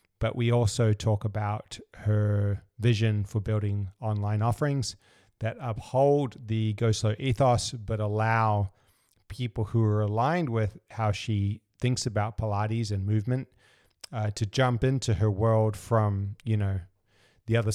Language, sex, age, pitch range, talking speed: English, male, 30-49, 105-120 Hz, 140 wpm